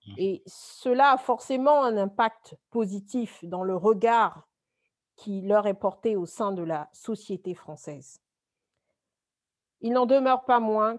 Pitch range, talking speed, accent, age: 190-250 Hz, 135 wpm, French, 50-69